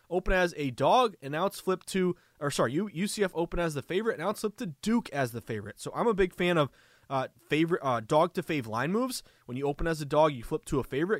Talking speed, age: 255 wpm, 20-39